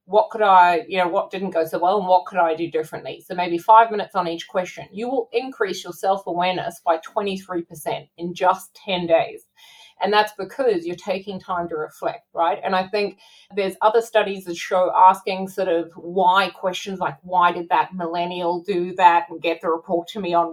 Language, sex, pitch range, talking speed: English, female, 170-210 Hz, 210 wpm